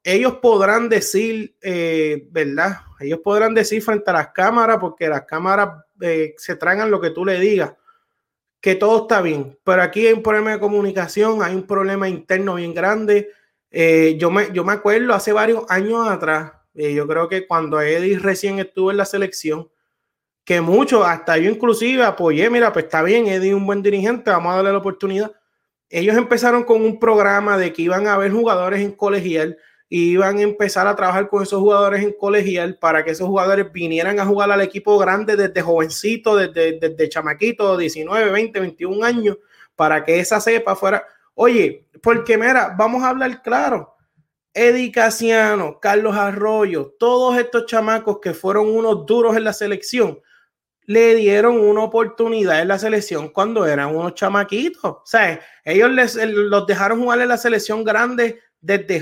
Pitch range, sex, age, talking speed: 180-220 Hz, male, 30-49, 175 wpm